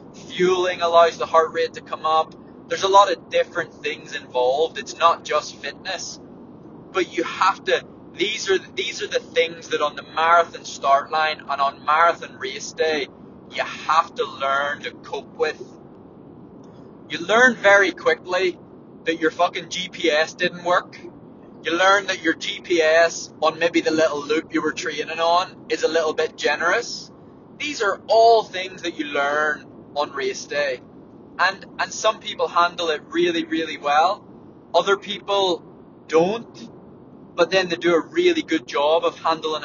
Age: 20-39